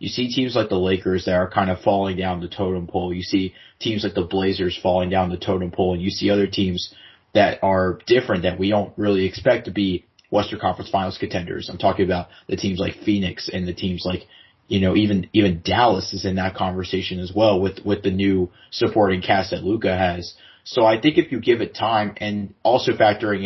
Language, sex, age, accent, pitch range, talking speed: English, male, 30-49, American, 95-105 Hz, 225 wpm